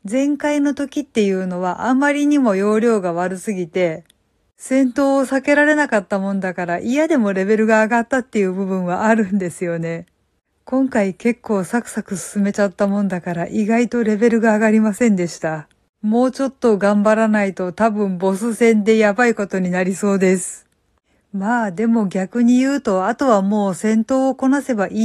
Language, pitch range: Japanese, 190-245 Hz